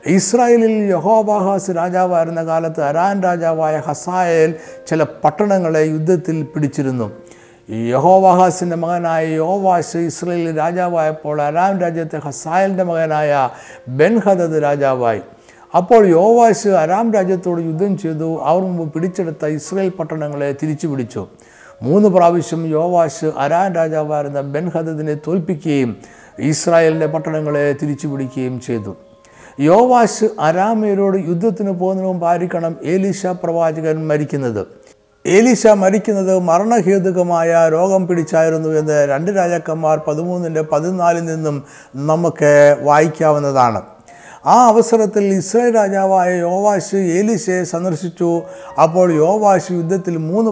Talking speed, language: 95 wpm, Malayalam